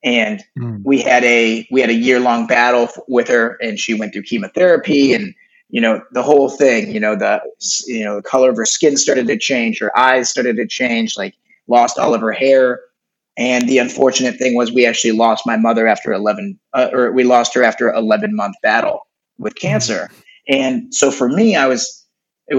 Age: 30-49